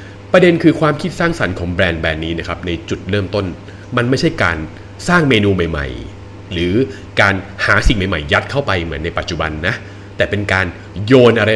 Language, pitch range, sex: Thai, 90-115 Hz, male